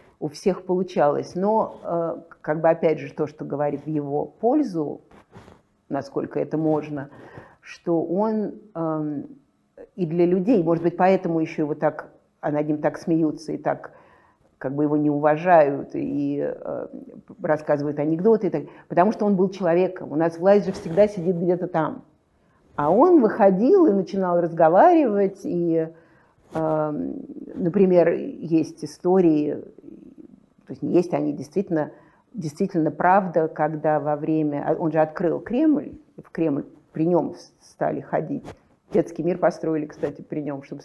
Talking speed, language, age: 145 wpm, Russian, 50-69